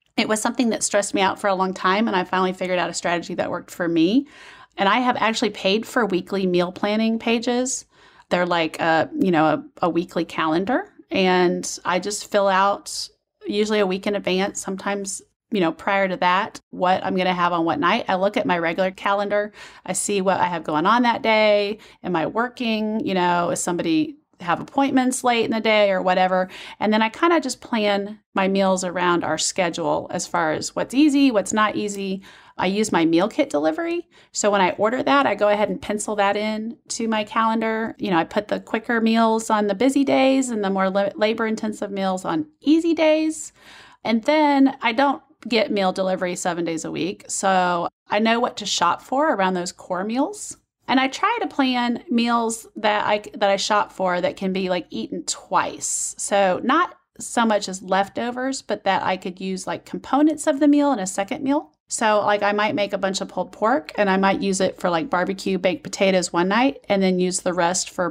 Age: 30-49